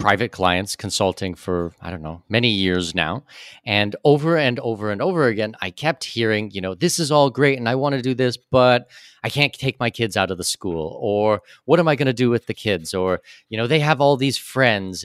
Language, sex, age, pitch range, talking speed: English, male, 30-49, 100-135 Hz, 240 wpm